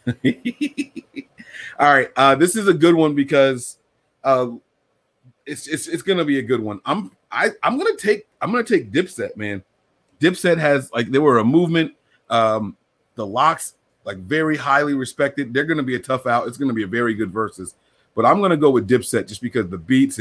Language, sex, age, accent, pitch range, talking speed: English, male, 30-49, American, 110-135 Hz, 195 wpm